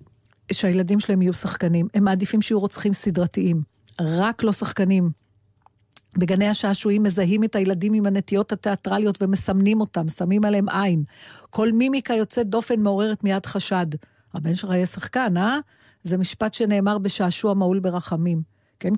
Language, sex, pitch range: Hebrew, female, 180-220 Hz